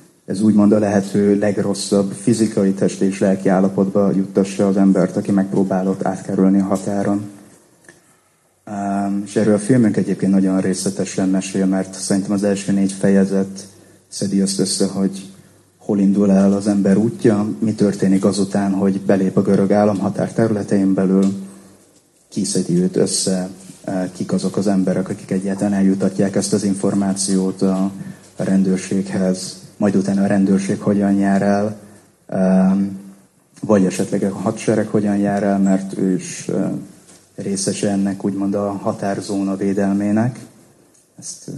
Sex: male